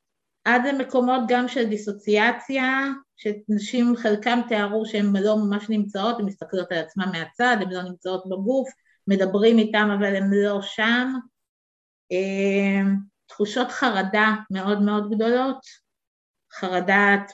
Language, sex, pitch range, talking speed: Hebrew, female, 185-235 Hz, 115 wpm